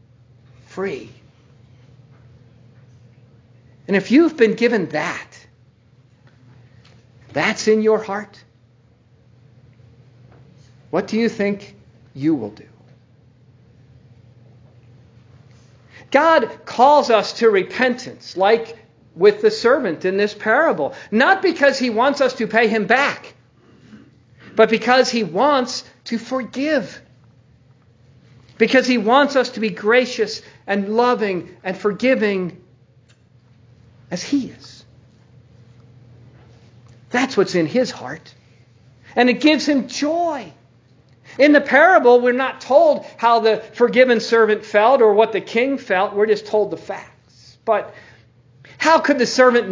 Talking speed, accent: 115 wpm, American